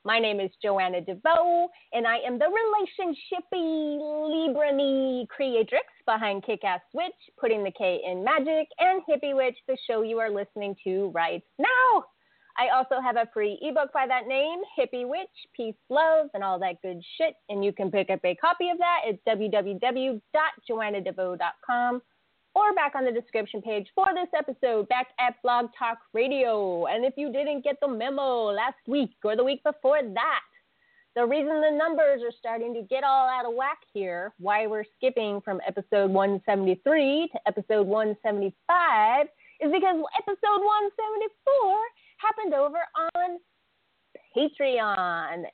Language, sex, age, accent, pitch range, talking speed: English, female, 30-49, American, 210-320 Hz, 155 wpm